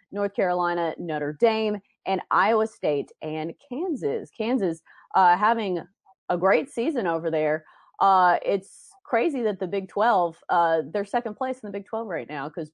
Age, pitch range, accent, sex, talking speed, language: 30-49, 170-215 Hz, American, female, 165 wpm, English